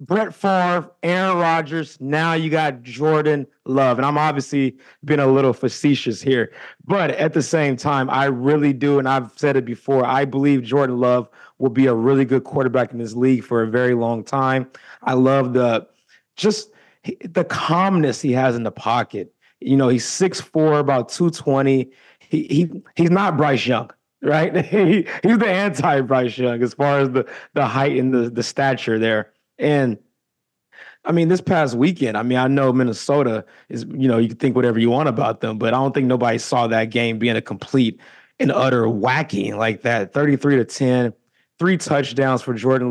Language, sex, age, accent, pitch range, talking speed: English, male, 30-49, American, 125-150 Hz, 190 wpm